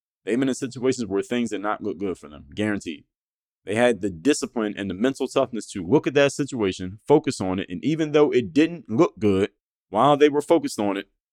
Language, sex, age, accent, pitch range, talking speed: English, male, 30-49, American, 95-115 Hz, 220 wpm